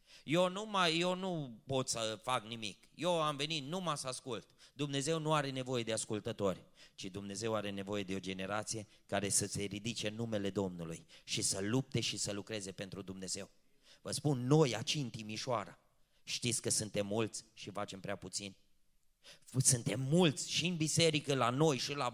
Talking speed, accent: 175 wpm, native